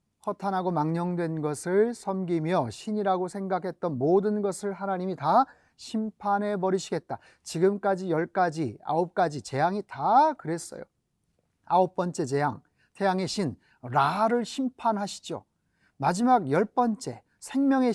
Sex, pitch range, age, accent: male, 165-215 Hz, 30-49, native